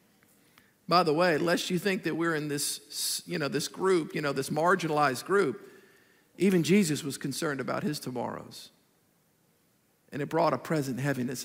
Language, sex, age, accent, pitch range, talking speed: English, male, 50-69, American, 145-185 Hz, 170 wpm